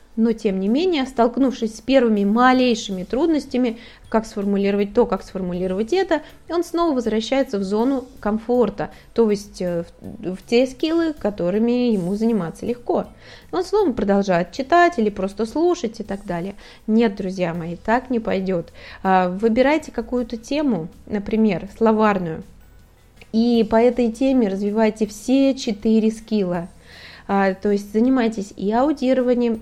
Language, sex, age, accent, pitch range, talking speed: Russian, female, 20-39, native, 205-260 Hz, 130 wpm